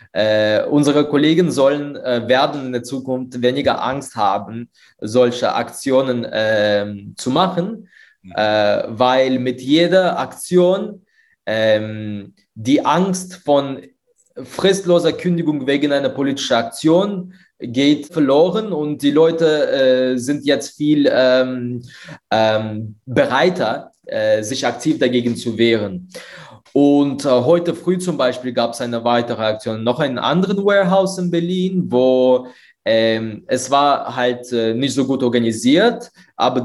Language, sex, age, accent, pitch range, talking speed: German, male, 20-39, German, 125-175 Hz, 125 wpm